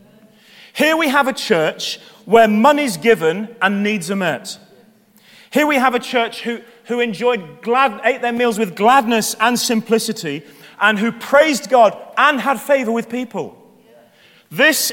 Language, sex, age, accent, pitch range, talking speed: English, male, 30-49, British, 210-240 Hz, 150 wpm